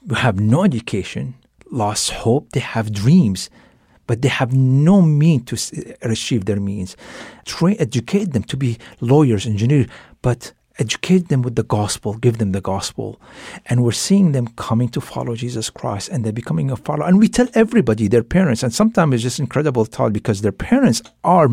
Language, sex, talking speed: English, male, 185 wpm